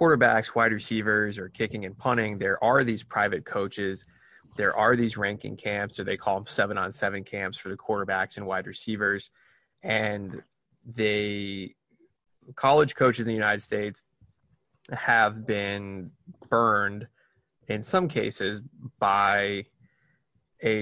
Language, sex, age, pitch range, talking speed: English, male, 20-39, 100-115 Hz, 135 wpm